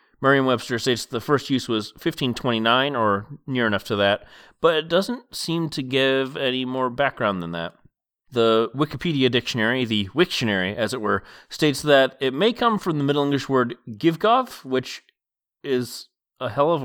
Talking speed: 165 wpm